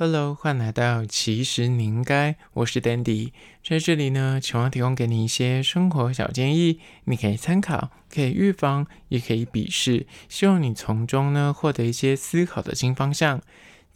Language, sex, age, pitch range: Chinese, male, 20-39, 120-165 Hz